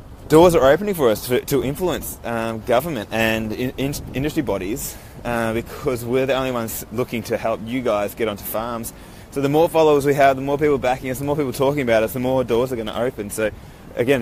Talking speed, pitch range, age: 230 wpm, 100-125 Hz, 20-39